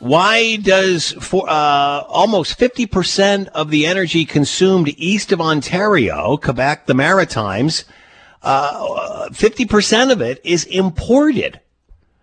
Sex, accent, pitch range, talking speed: male, American, 140-220 Hz, 110 wpm